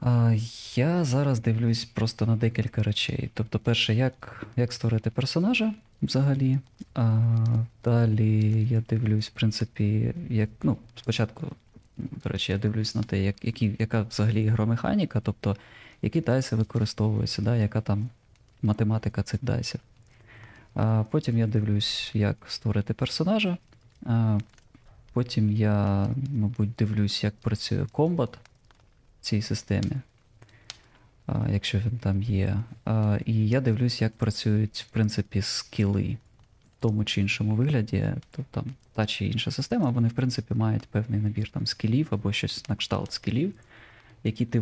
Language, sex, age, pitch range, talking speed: Ukrainian, male, 20-39, 105-125 Hz, 135 wpm